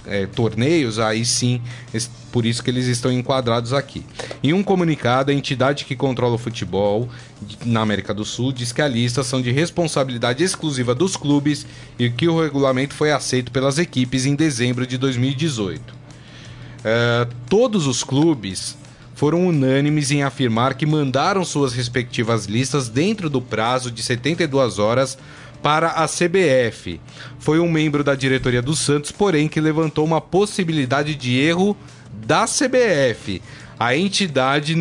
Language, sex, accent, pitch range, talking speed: Portuguese, male, Brazilian, 125-155 Hz, 145 wpm